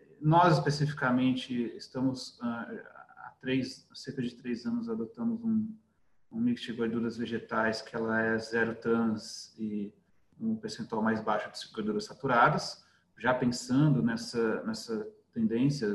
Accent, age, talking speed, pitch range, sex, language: Brazilian, 40-59, 130 wpm, 120-165 Hz, male, Portuguese